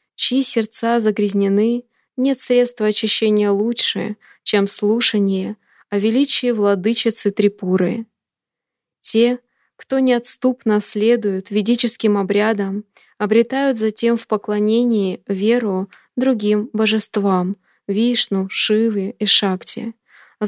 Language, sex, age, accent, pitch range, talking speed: Russian, female, 20-39, native, 200-235 Hz, 90 wpm